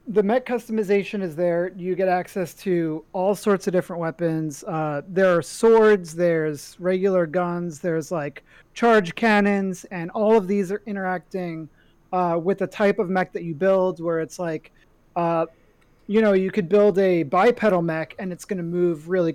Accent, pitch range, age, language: American, 160-195 Hz, 30-49, English